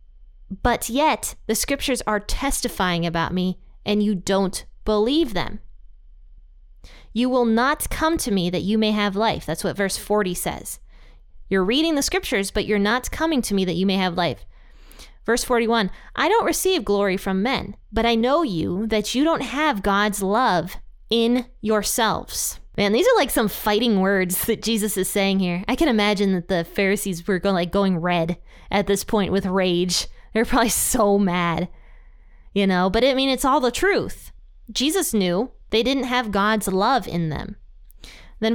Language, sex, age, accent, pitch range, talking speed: English, female, 20-39, American, 180-240 Hz, 180 wpm